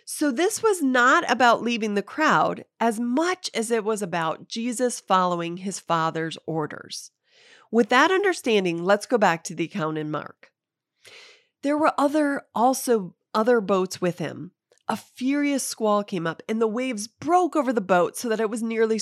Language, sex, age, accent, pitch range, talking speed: English, female, 30-49, American, 200-310 Hz, 175 wpm